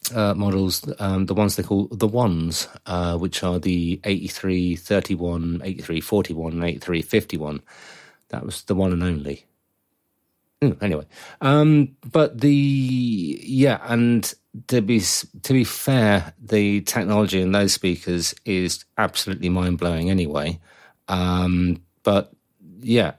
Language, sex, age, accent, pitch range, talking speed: English, male, 30-49, British, 85-105 Hz, 125 wpm